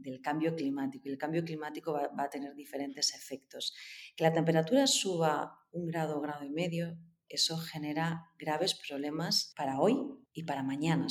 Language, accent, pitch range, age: Spanish, Spanish, 150-170 Hz, 30-49